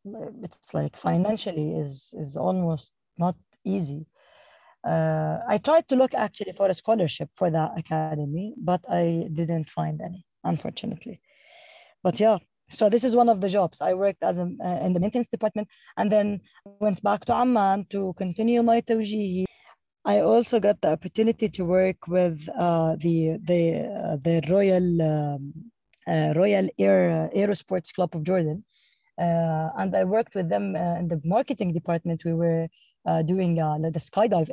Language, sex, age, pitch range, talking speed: English, female, 20-39, 165-210 Hz, 165 wpm